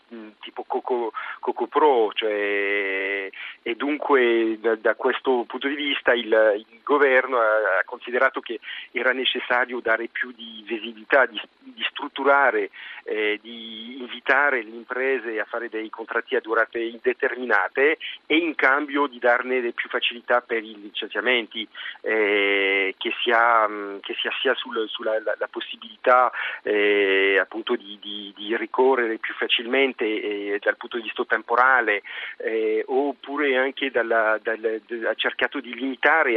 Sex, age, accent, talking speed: male, 40-59, native, 135 wpm